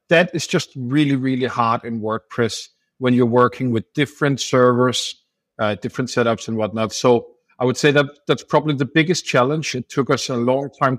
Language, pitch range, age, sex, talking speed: English, 115-140 Hz, 50-69, male, 190 wpm